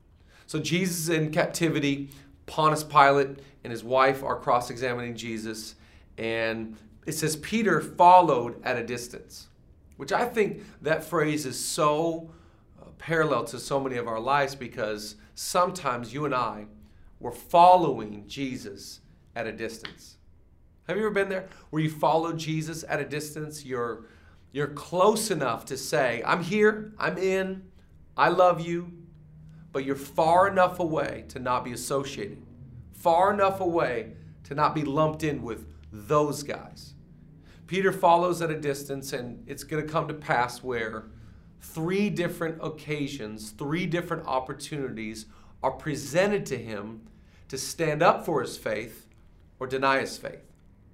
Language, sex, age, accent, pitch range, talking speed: English, male, 40-59, American, 115-165 Hz, 145 wpm